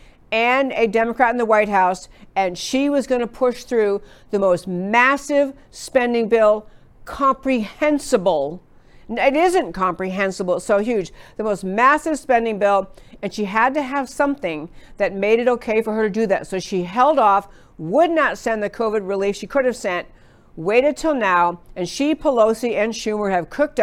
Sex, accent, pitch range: female, American, 195-255 Hz